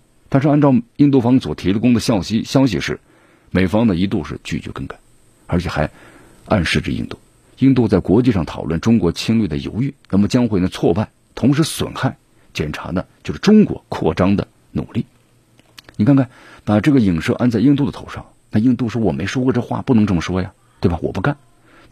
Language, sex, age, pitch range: Chinese, male, 50-69, 100-130 Hz